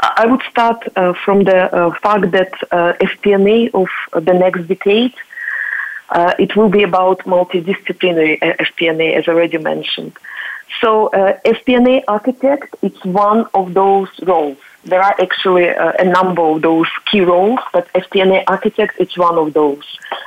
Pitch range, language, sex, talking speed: 180-220 Hz, English, female, 150 wpm